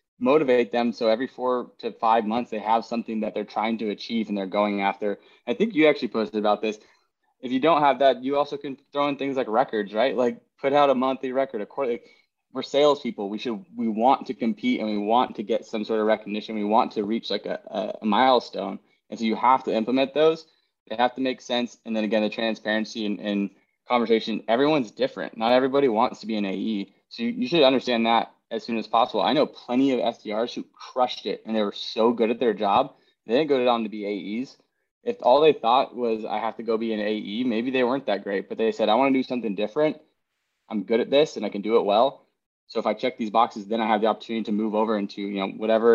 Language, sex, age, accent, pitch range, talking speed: English, male, 20-39, American, 110-125 Hz, 245 wpm